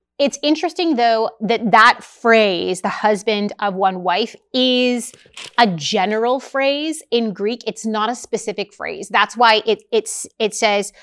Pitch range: 205-265 Hz